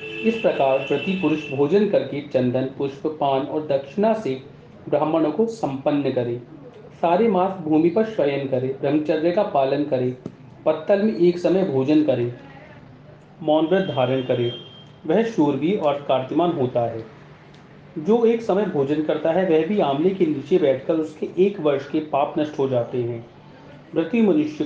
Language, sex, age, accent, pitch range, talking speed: Hindi, male, 40-59, native, 135-170 Hz, 150 wpm